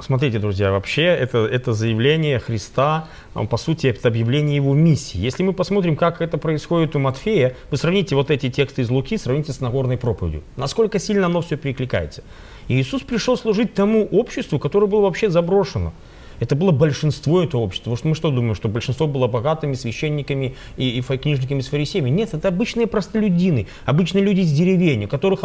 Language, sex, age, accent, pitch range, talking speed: Russian, male, 30-49, native, 125-180 Hz, 175 wpm